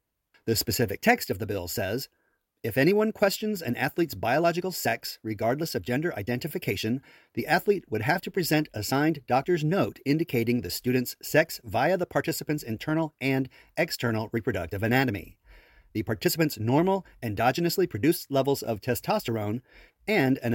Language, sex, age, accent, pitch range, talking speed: English, male, 40-59, American, 110-160 Hz, 145 wpm